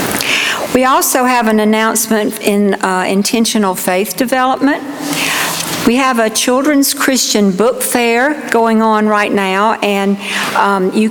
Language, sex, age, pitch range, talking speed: English, female, 60-79, 195-240 Hz, 130 wpm